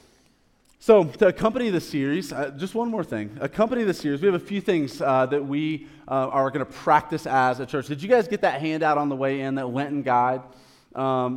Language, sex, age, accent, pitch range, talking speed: English, male, 20-39, American, 130-165 Hz, 225 wpm